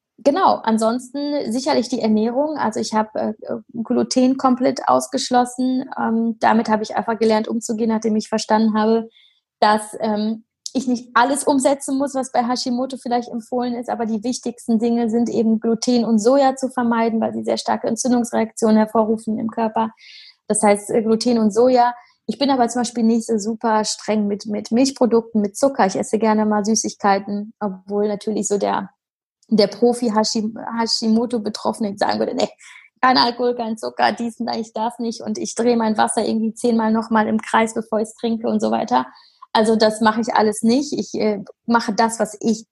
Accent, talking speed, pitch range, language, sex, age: German, 175 wpm, 215-245 Hz, German, female, 20-39